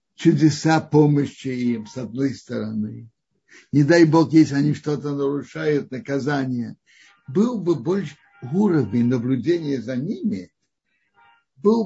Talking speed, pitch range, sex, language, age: 110 wpm, 115-150 Hz, male, Russian, 60-79